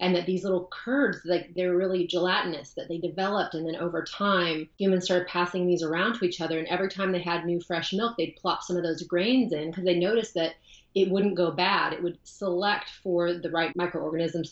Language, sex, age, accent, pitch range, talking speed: English, female, 30-49, American, 170-190 Hz, 225 wpm